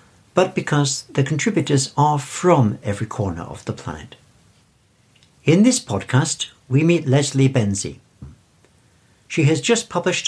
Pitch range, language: 115-150 Hz, English